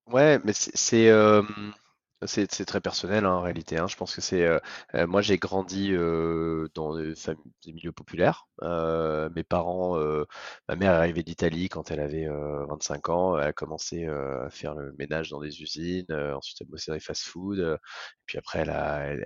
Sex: male